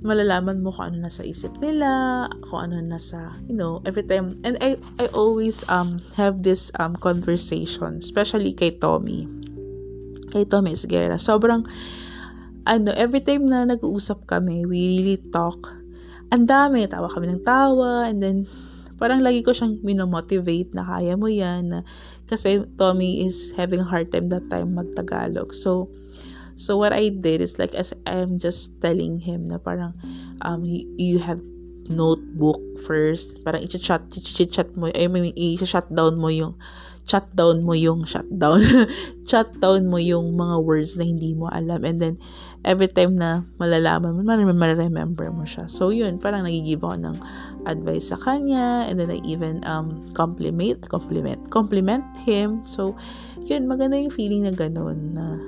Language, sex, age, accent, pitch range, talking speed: English, female, 20-39, Filipino, 160-205 Hz, 165 wpm